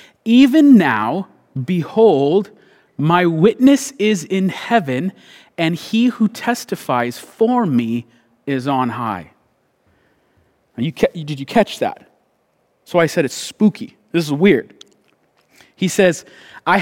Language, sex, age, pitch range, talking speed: English, male, 30-49, 165-215 Hz, 115 wpm